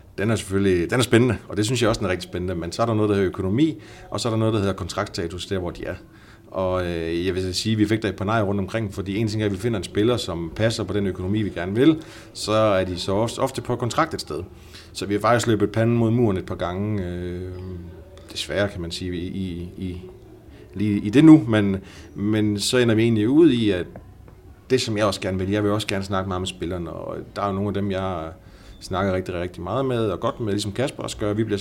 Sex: male